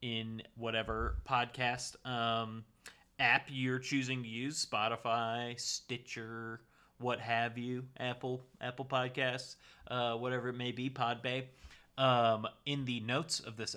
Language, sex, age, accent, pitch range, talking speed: English, male, 30-49, American, 115-140 Hz, 125 wpm